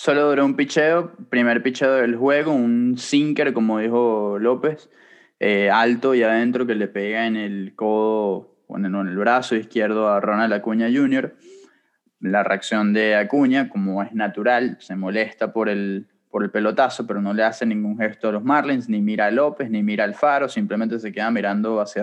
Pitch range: 105-135 Hz